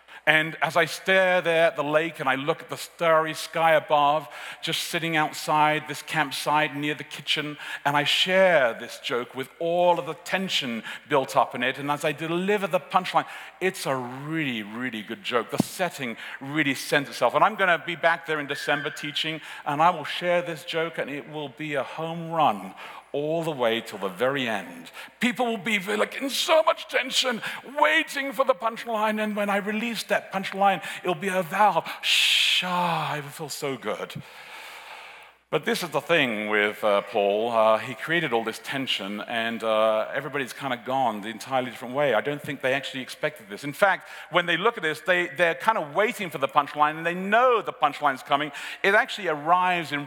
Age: 50-69